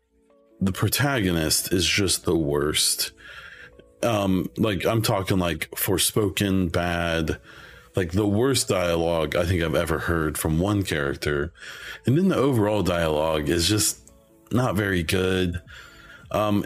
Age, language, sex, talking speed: 30-49, English, male, 135 wpm